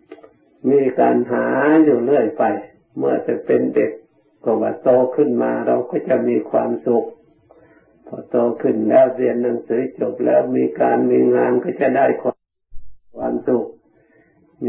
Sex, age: male, 60-79